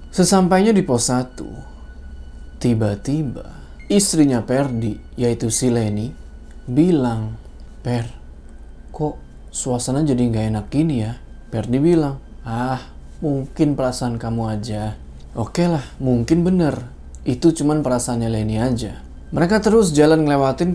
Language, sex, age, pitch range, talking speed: Indonesian, male, 20-39, 110-145 Hz, 115 wpm